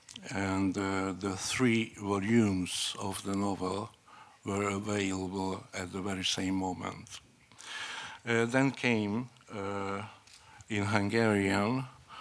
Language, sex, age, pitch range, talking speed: Hungarian, male, 60-79, 95-110 Hz, 105 wpm